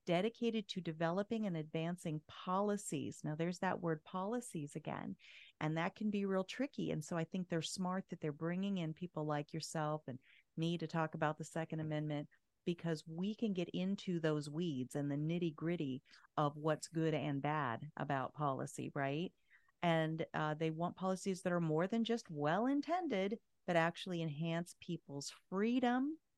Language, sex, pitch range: English, female, 155-190 Hz